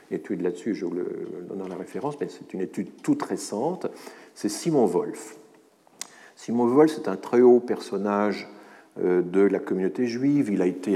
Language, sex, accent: French, male, French